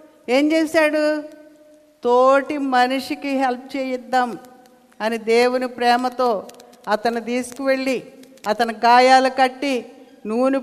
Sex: female